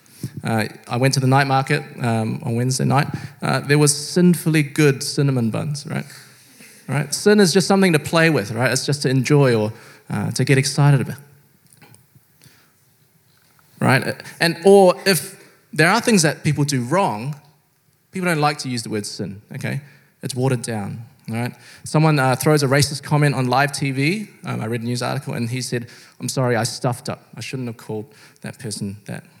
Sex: male